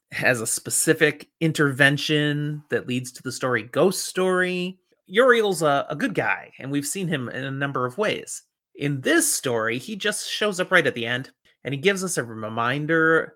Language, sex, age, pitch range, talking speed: English, male, 30-49, 135-185 Hz, 190 wpm